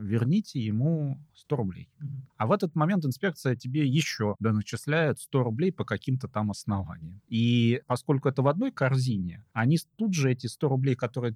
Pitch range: 110-150 Hz